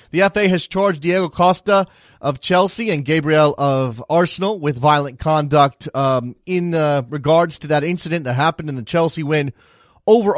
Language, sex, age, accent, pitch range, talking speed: English, male, 30-49, American, 135-165 Hz, 170 wpm